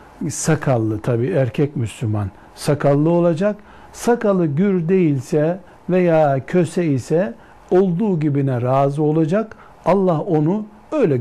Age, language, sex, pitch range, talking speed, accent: 60-79, Turkish, male, 135-190 Hz, 100 wpm, native